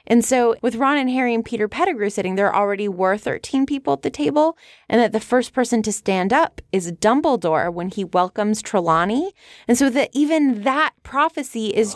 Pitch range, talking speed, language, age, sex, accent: 190-265 Hz, 195 wpm, English, 20-39, female, American